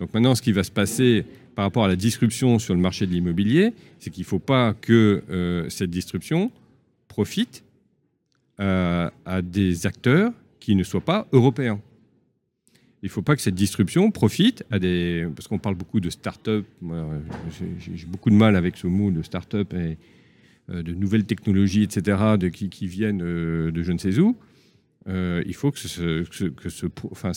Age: 50-69